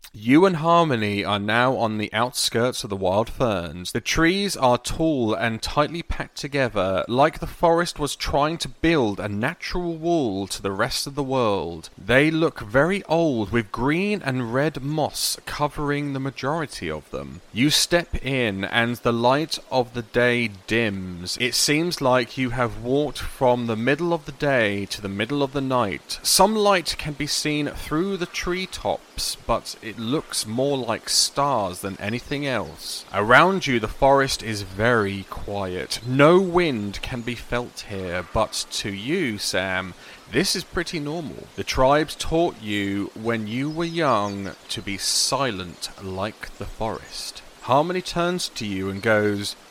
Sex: male